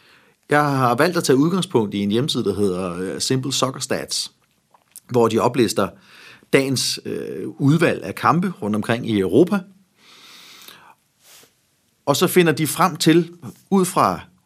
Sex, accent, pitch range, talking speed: male, native, 120-165 Hz, 135 wpm